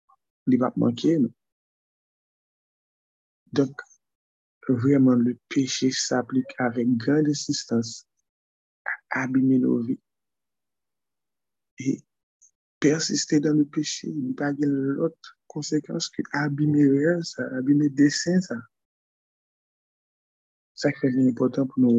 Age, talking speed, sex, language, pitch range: 50-69, 105 wpm, male, French, 125-150 Hz